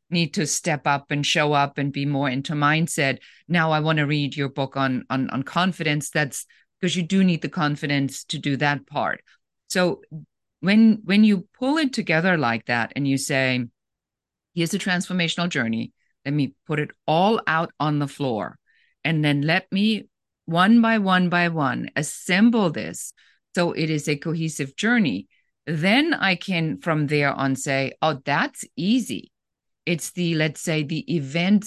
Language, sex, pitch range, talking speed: English, female, 140-180 Hz, 175 wpm